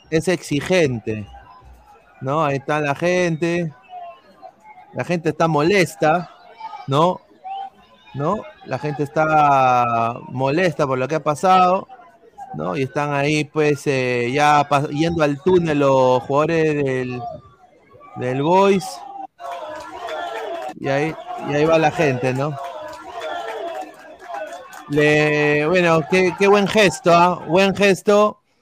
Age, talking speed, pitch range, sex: 30-49, 110 wpm, 140-200 Hz, male